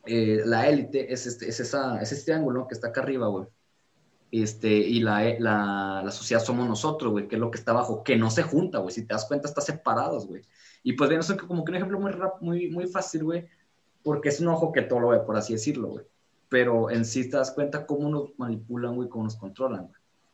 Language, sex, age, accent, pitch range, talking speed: Spanish, male, 20-39, Mexican, 115-160 Hz, 250 wpm